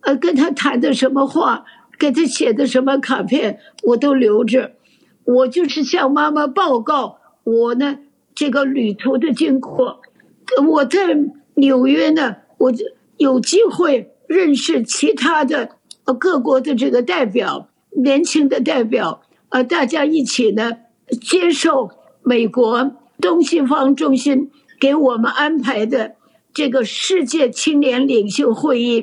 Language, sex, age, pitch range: English, female, 60-79, 250-300 Hz